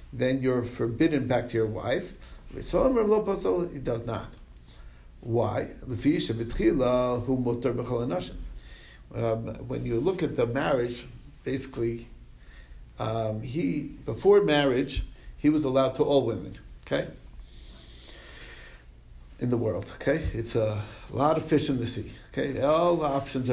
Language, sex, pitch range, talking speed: English, male, 110-145 Hz, 115 wpm